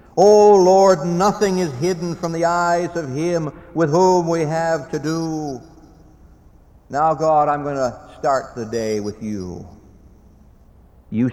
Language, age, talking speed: English, 60-79, 145 wpm